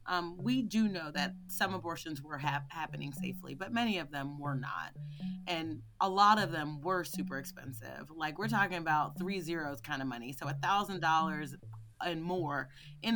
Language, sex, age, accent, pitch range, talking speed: English, female, 30-49, American, 150-205 Hz, 180 wpm